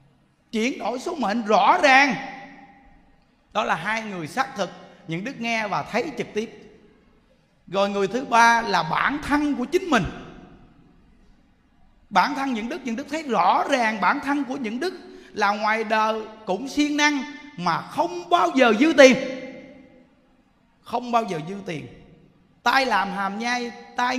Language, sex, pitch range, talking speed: Vietnamese, male, 200-270 Hz, 160 wpm